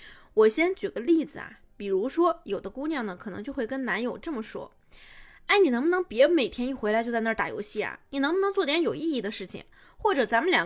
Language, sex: Chinese, female